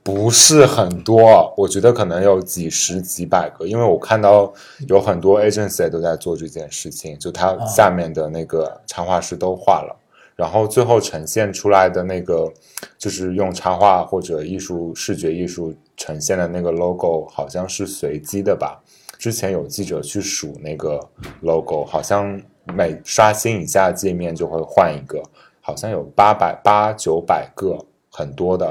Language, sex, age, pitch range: Chinese, male, 20-39, 85-100 Hz